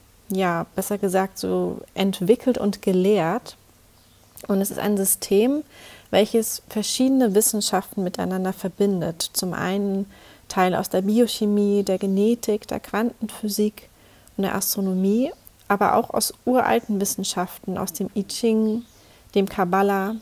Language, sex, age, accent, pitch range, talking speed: German, female, 30-49, German, 185-215 Hz, 120 wpm